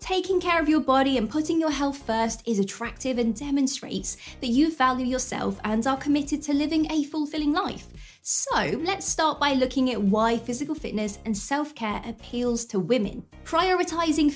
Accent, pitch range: British, 220-295 Hz